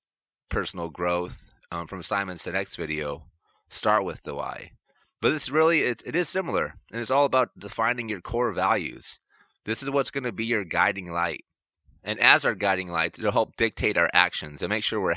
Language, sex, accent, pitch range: English, male, American, 85-115 Hz